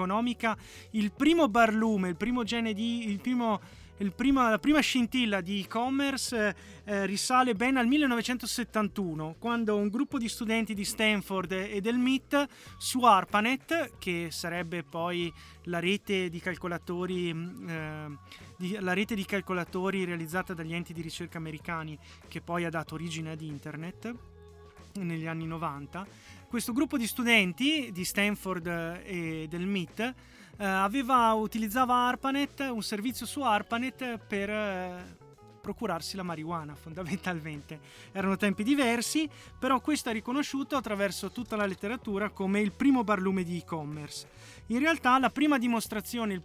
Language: Italian